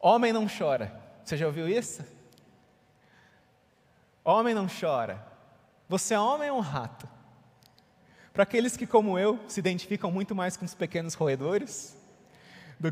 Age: 30-49